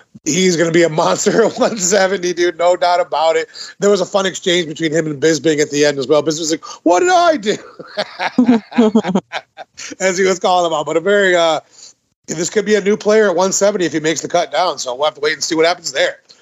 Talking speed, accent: 245 wpm, American